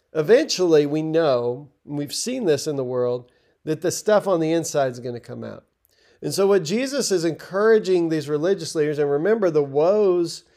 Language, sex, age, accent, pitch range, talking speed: English, male, 40-59, American, 145-190 Hz, 195 wpm